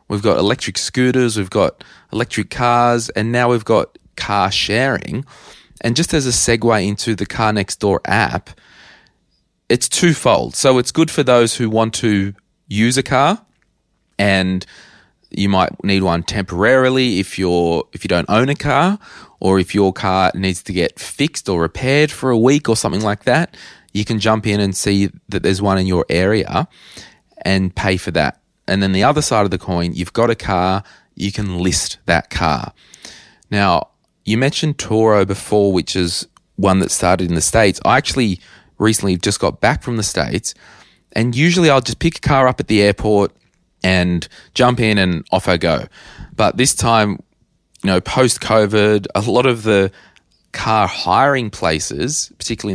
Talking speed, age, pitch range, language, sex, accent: 175 wpm, 20-39, 95-120 Hz, English, male, Australian